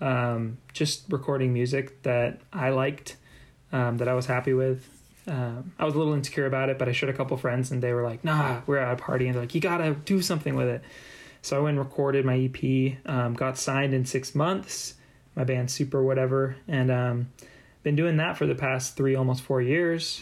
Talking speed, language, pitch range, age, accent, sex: 225 wpm, English, 130-150 Hz, 20-39, American, male